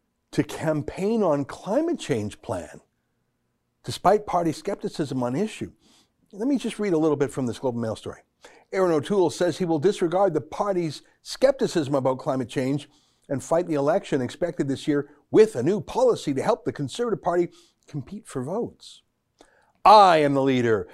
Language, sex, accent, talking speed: English, male, American, 165 wpm